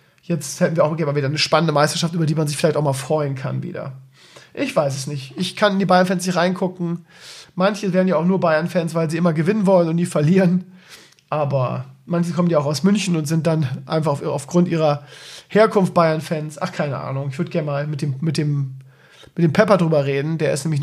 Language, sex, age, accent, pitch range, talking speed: German, male, 40-59, German, 150-185 Hz, 220 wpm